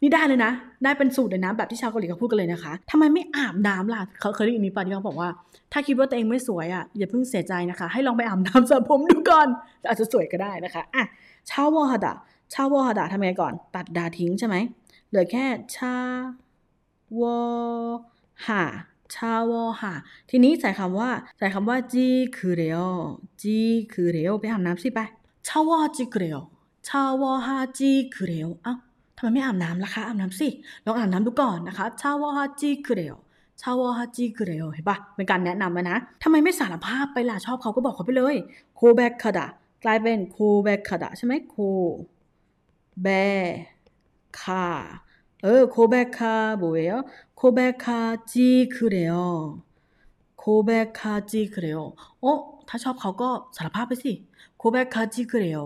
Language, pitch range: Korean, 190-255 Hz